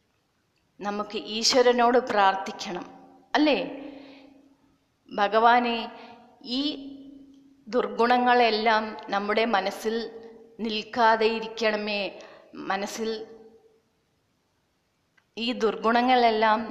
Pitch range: 200-245 Hz